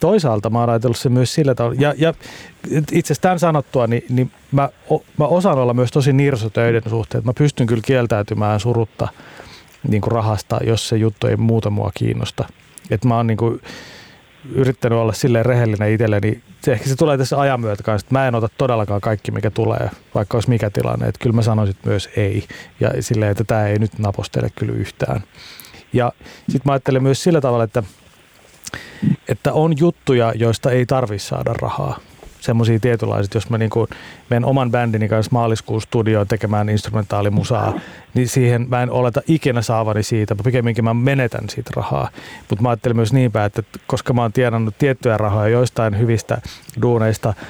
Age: 30-49